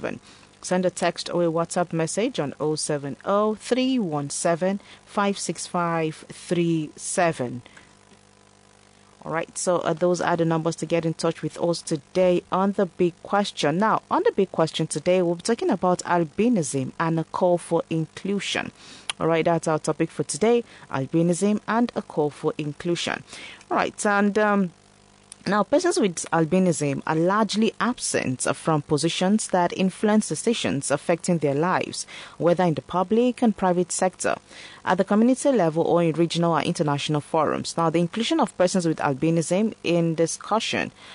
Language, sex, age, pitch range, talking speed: English, female, 30-49, 155-195 Hz, 145 wpm